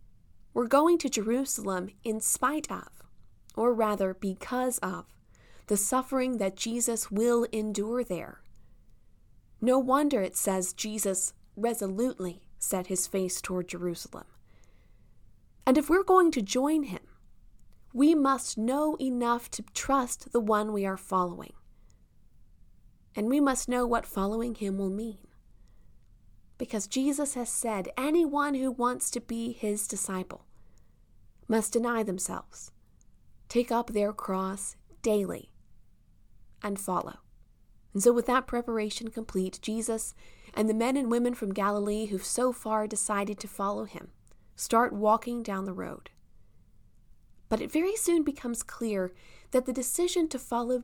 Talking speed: 135 wpm